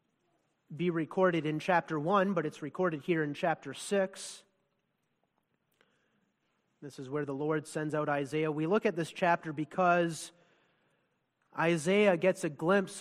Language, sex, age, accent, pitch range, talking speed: English, male, 30-49, American, 155-210 Hz, 140 wpm